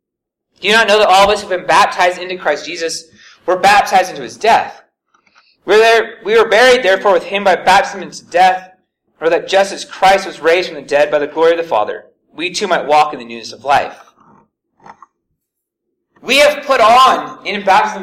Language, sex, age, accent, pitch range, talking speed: English, male, 30-49, American, 185-270 Hz, 210 wpm